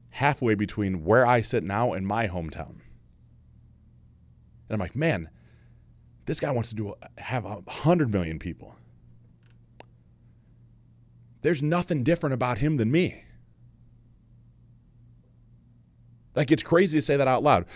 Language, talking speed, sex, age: English, 130 wpm, male, 30-49